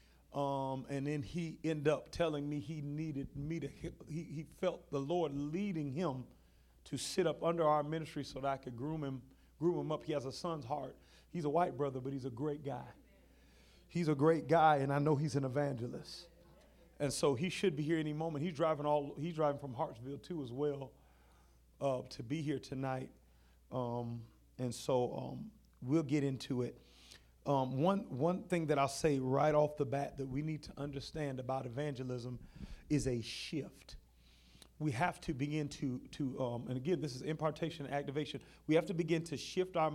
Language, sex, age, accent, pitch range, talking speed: English, male, 40-59, American, 125-160 Hz, 195 wpm